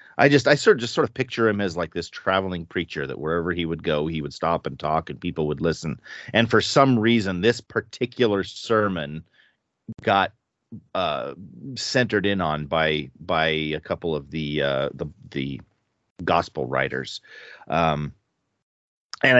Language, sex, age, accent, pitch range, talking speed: English, male, 40-59, American, 80-110 Hz, 165 wpm